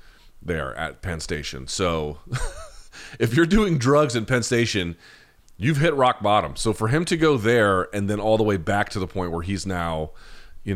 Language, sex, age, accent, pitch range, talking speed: English, male, 30-49, American, 80-110 Hz, 195 wpm